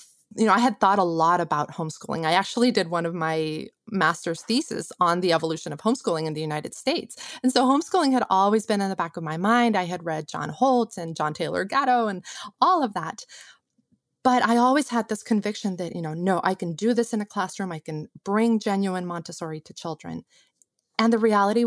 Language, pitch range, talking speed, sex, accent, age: English, 170-230 Hz, 215 wpm, female, American, 20-39